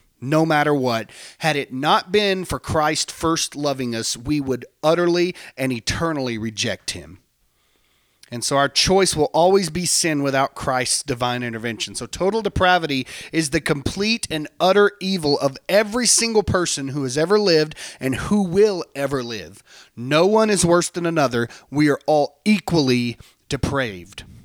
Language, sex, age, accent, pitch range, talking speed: English, male, 30-49, American, 125-180 Hz, 155 wpm